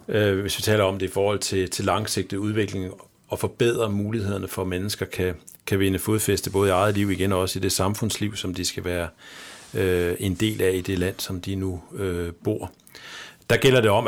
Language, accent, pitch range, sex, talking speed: Danish, native, 95-110 Hz, male, 215 wpm